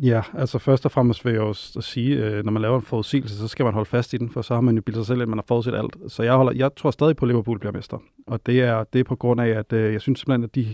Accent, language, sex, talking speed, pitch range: native, Danish, male, 350 wpm, 110-130 Hz